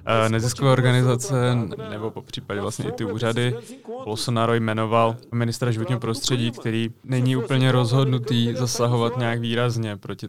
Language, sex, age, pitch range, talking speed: Czech, male, 20-39, 110-125 Hz, 120 wpm